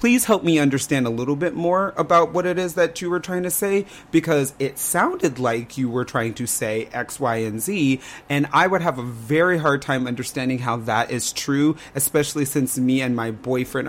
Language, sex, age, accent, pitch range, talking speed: English, male, 30-49, American, 115-145 Hz, 215 wpm